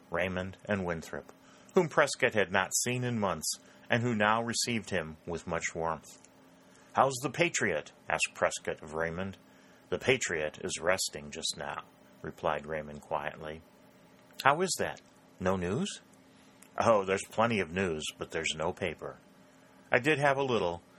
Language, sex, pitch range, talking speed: English, male, 80-105 Hz, 150 wpm